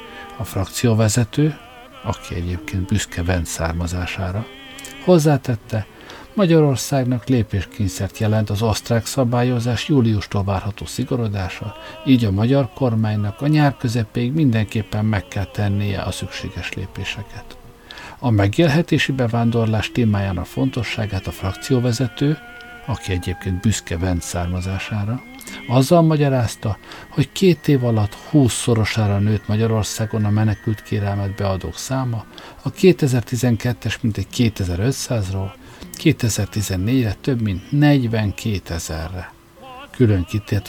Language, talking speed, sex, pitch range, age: Hungarian, 100 wpm, male, 100-130 Hz, 60-79